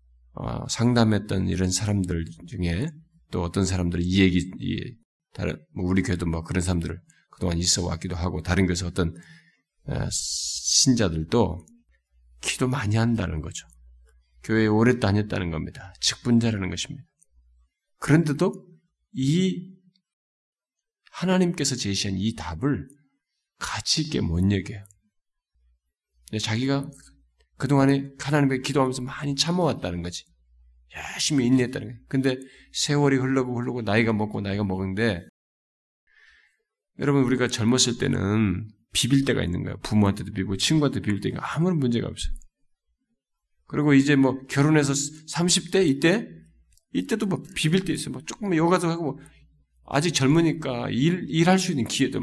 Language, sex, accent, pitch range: Korean, male, native, 90-140 Hz